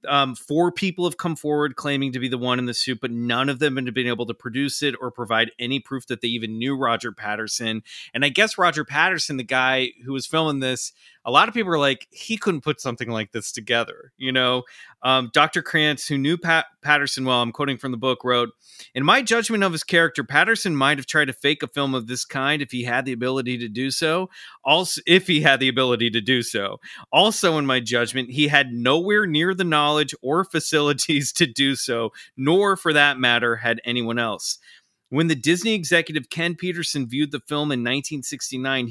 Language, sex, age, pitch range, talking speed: English, male, 30-49, 125-155 Hz, 215 wpm